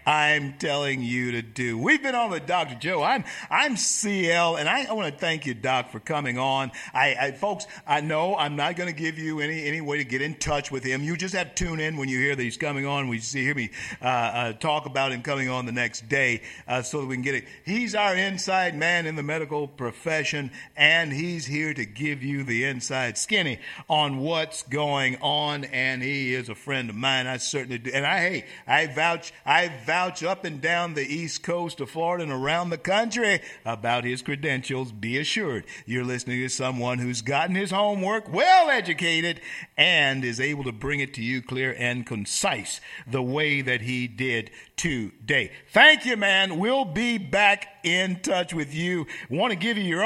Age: 50-69